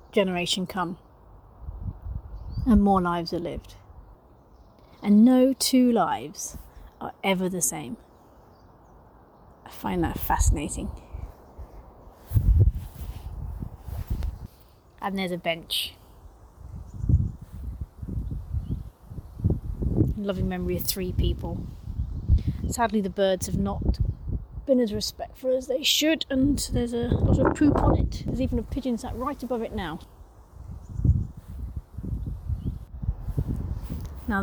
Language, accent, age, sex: English, British, 30-49, female